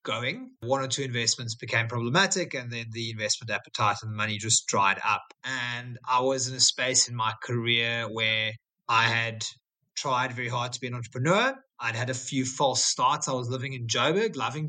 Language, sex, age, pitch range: English, male, 30-49, 120-150 Hz